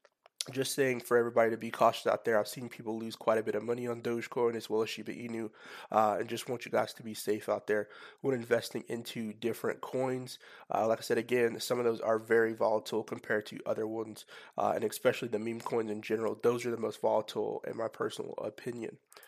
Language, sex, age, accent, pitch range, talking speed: English, male, 20-39, American, 115-130 Hz, 225 wpm